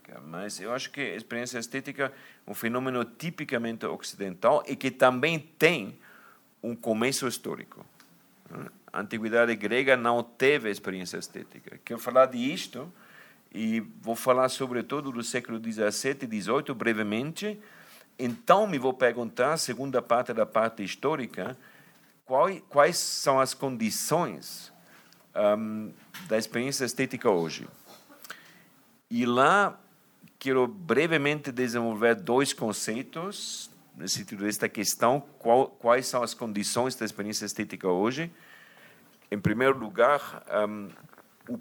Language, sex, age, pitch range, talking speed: Portuguese, male, 50-69, 105-135 Hz, 120 wpm